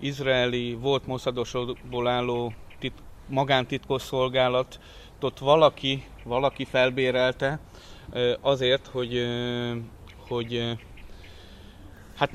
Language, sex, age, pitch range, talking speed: Hungarian, male, 30-49, 120-135 Hz, 60 wpm